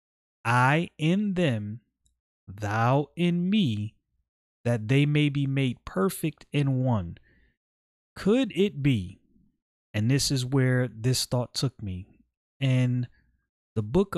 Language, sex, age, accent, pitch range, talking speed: English, male, 30-49, American, 105-145 Hz, 120 wpm